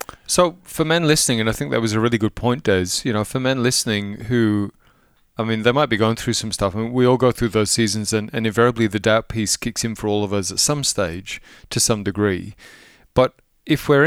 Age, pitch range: 30-49, 105-130 Hz